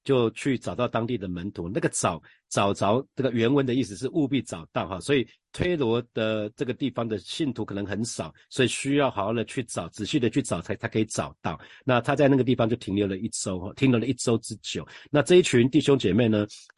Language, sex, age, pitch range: Chinese, male, 50-69, 105-130 Hz